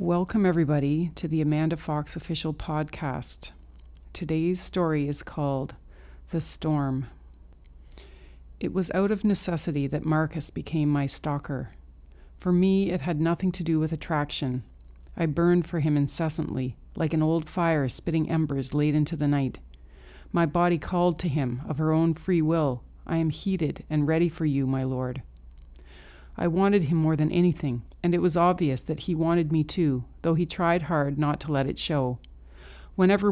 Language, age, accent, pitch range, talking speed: English, 40-59, American, 135-170 Hz, 165 wpm